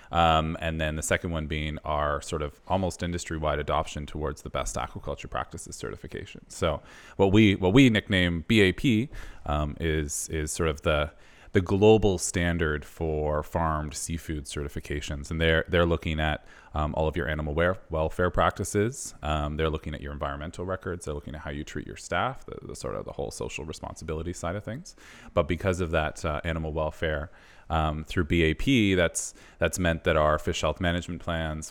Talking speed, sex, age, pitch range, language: 180 wpm, male, 30-49, 75-85 Hz, English